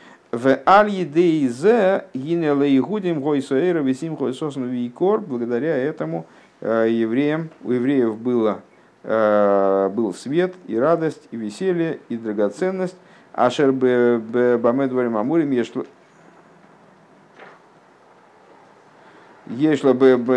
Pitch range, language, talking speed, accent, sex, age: 110-150 Hz, Russian, 55 wpm, native, male, 50-69